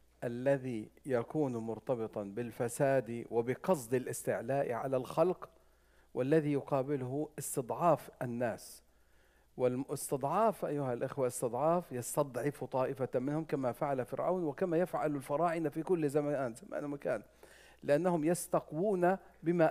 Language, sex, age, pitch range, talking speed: English, male, 50-69, 130-170 Hz, 95 wpm